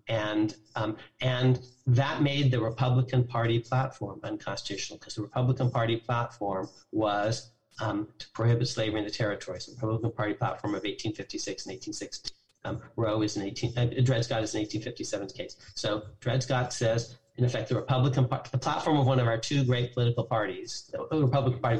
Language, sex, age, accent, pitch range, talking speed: English, male, 40-59, American, 115-135 Hz, 185 wpm